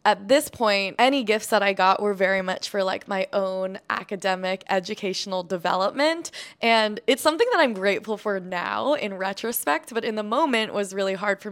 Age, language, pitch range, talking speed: 20-39, English, 195-230 Hz, 190 wpm